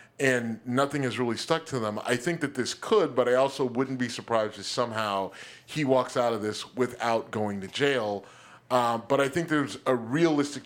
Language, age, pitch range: English, 30-49, 120-145 Hz